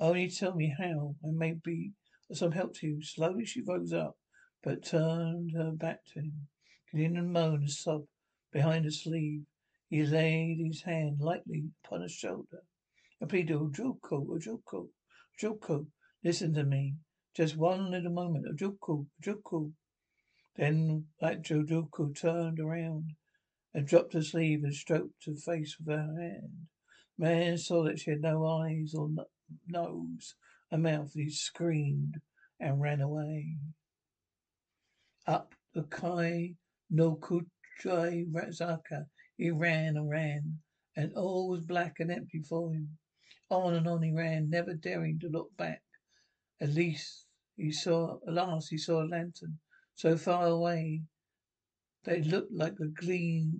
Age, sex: 60-79, male